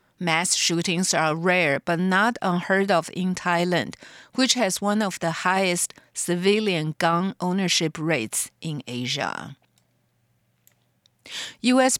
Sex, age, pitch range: female, 50-69, 165-205 Hz